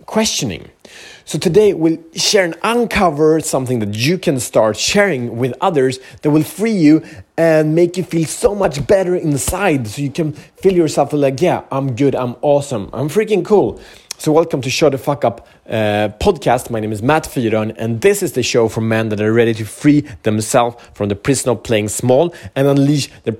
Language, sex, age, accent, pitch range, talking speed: Swedish, male, 30-49, Norwegian, 120-160 Hz, 200 wpm